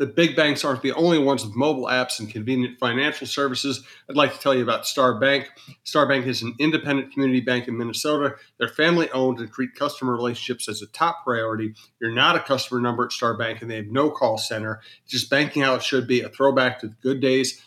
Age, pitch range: 40-59, 120-140 Hz